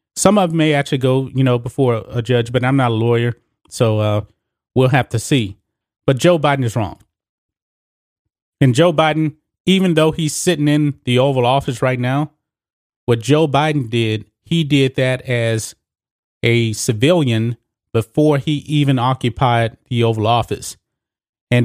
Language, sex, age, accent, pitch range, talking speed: English, male, 30-49, American, 115-145 Hz, 160 wpm